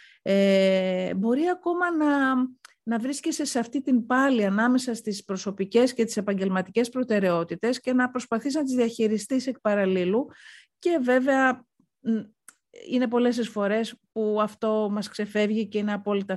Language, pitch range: Greek, 185-230 Hz